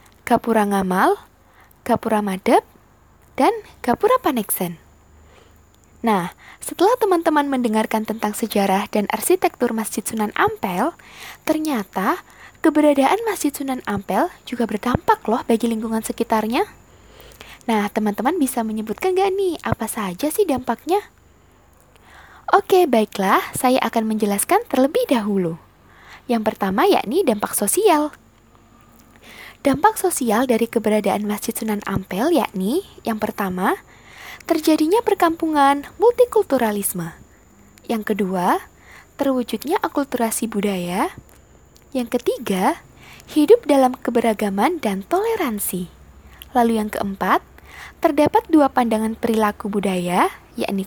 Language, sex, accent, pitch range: Indonesian, female, native, 210-320 Hz